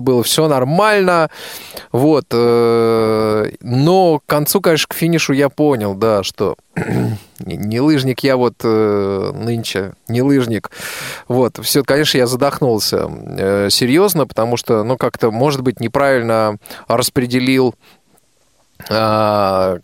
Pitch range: 115-155 Hz